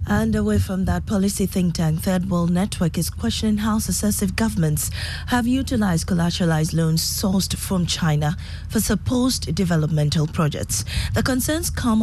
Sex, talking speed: female, 145 wpm